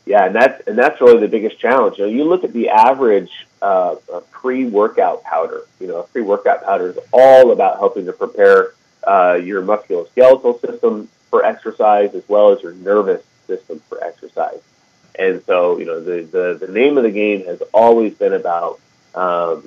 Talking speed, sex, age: 185 wpm, male, 30-49